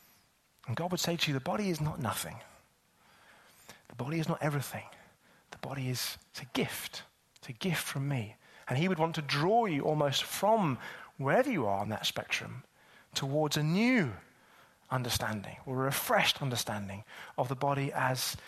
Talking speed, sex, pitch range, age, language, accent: 175 wpm, male, 140-210 Hz, 30-49, English, British